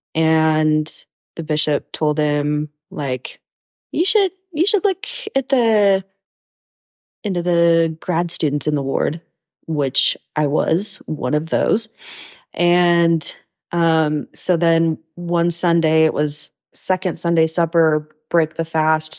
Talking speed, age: 125 wpm, 20-39